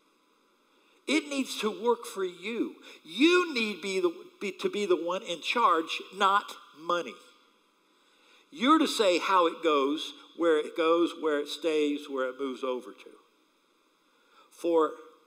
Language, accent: English, American